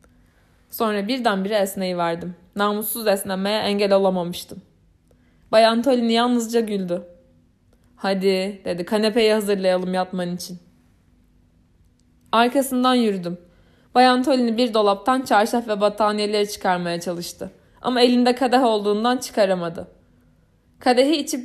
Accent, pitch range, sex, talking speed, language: native, 170-235 Hz, female, 100 wpm, Turkish